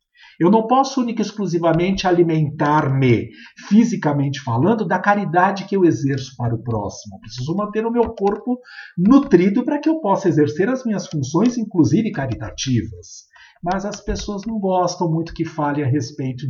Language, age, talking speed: Portuguese, 50-69, 160 wpm